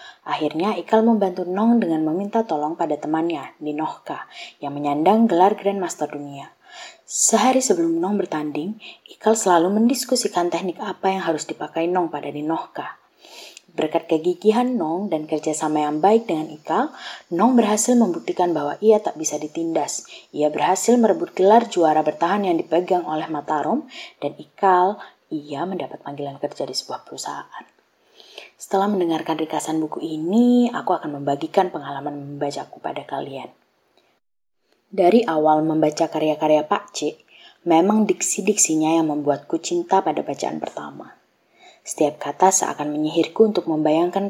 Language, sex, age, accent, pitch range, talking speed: Indonesian, female, 20-39, native, 155-200 Hz, 135 wpm